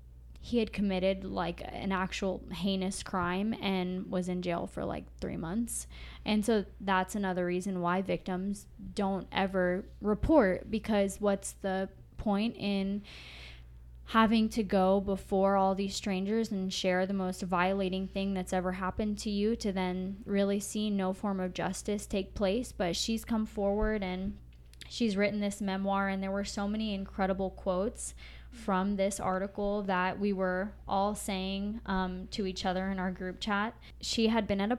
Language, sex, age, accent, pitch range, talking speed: English, female, 10-29, American, 185-205 Hz, 165 wpm